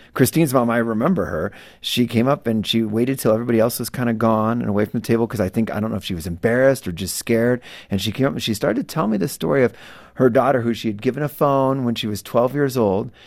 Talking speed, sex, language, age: 285 wpm, male, English, 40-59